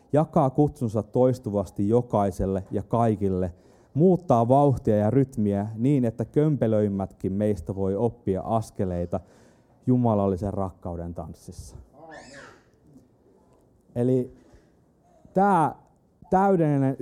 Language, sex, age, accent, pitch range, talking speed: Finnish, male, 30-49, native, 105-145 Hz, 80 wpm